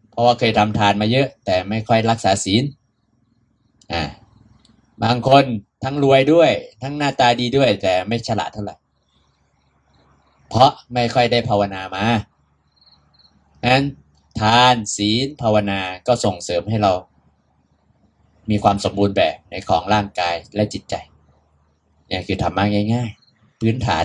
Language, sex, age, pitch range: Thai, male, 20-39, 100-115 Hz